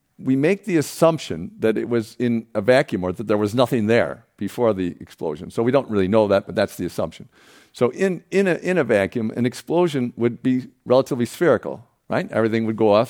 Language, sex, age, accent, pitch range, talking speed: English, male, 50-69, American, 105-140 Hz, 215 wpm